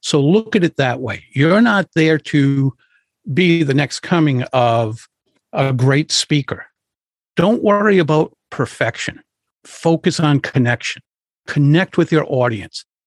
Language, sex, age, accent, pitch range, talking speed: English, male, 50-69, American, 130-185 Hz, 135 wpm